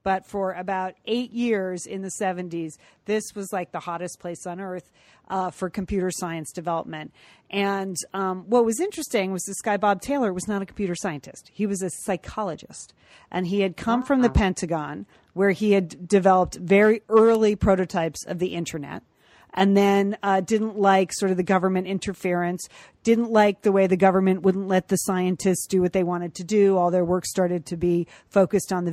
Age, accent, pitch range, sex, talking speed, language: 40-59, American, 180-210 Hz, female, 190 wpm, English